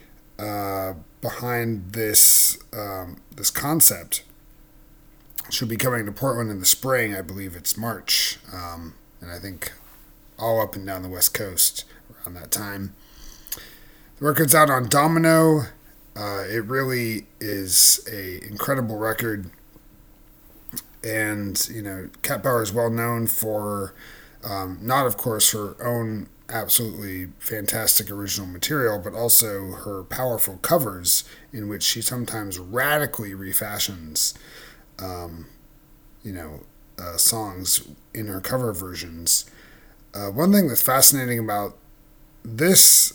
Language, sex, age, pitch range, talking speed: English, male, 30-49, 95-135 Hz, 125 wpm